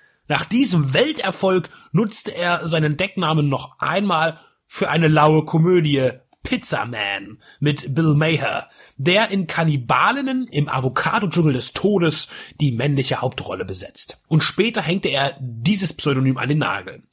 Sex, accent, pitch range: male, German, 140-190 Hz